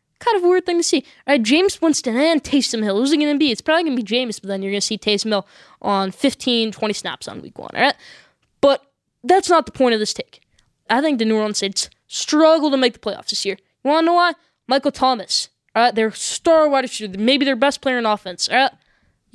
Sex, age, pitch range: female, 10-29, 215-290 Hz